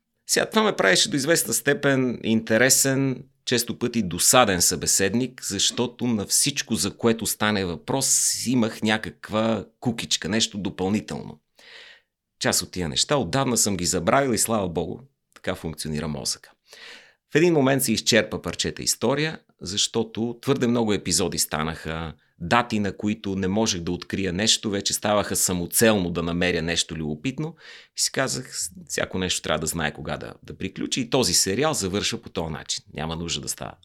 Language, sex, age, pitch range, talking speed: Bulgarian, male, 30-49, 85-120 Hz, 155 wpm